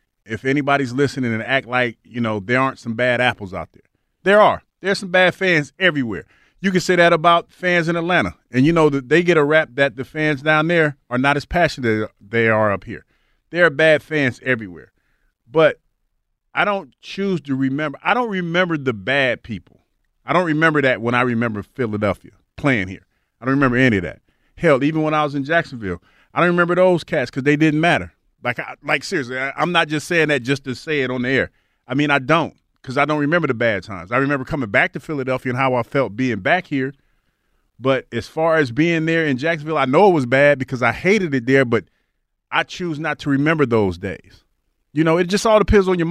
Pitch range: 120-160 Hz